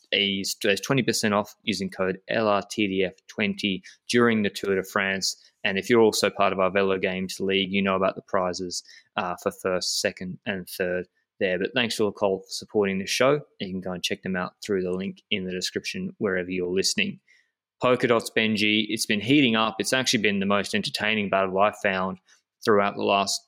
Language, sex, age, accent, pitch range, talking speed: English, male, 20-39, Australian, 95-115 Hz, 190 wpm